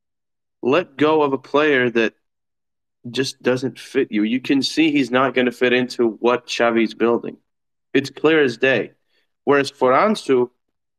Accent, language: American, English